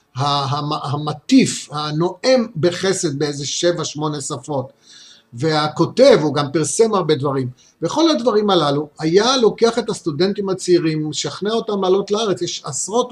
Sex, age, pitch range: male, 50-69, 145-190 Hz